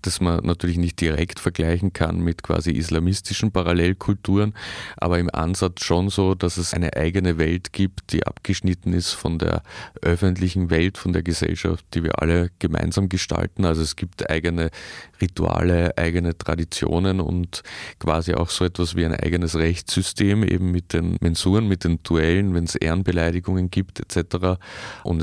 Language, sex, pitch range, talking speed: German, male, 85-95 Hz, 155 wpm